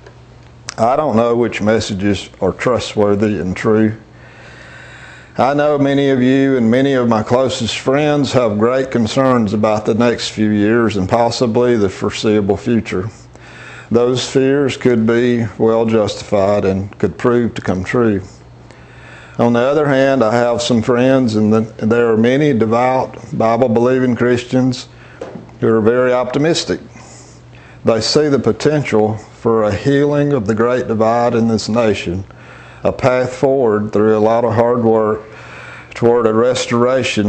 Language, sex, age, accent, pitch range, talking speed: English, male, 50-69, American, 105-125 Hz, 145 wpm